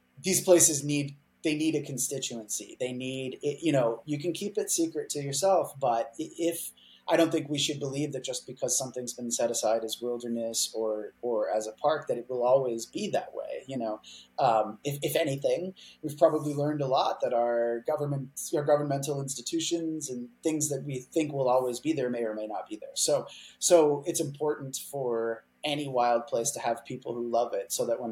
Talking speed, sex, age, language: 205 wpm, male, 20-39, English